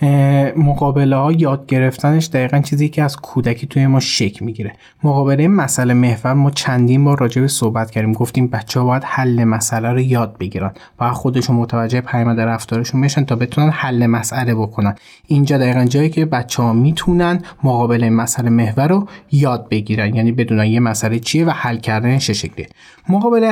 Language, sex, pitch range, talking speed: Persian, male, 120-150 Hz, 175 wpm